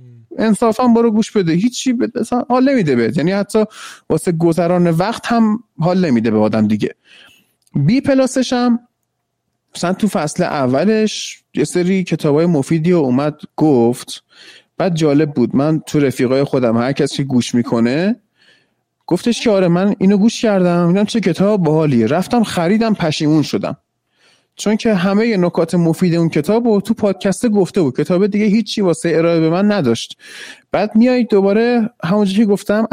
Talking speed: 155 wpm